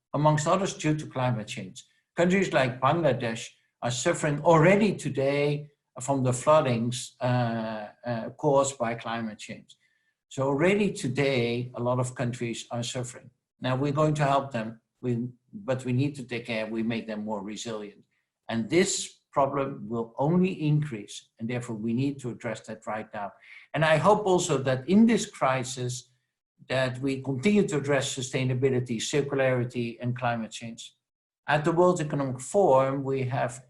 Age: 60-79